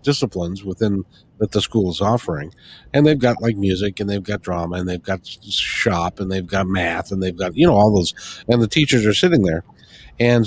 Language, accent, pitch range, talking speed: English, American, 95-135 Hz, 220 wpm